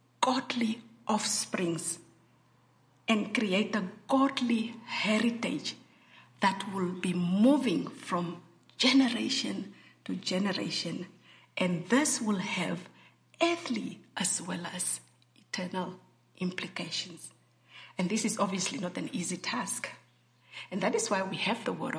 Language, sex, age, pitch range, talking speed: English, female, 50-69, 195-270 Hz, 110 wpm